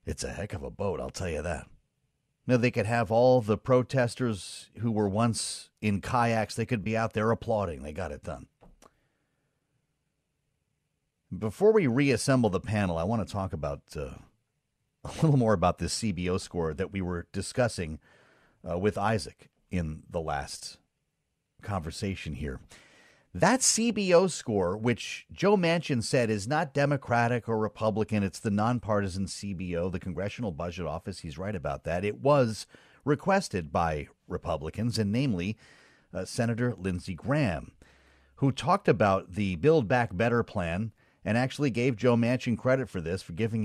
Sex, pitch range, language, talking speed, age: male, 95-125 Hz, English, 160 wpm, 40-59